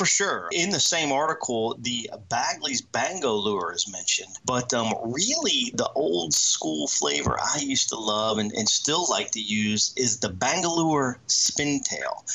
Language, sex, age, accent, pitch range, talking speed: English, male, 30-49, American, 120-160 Hz, 155 wpm